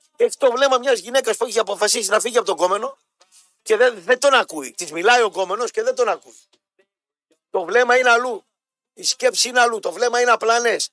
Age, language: 50-69, Greek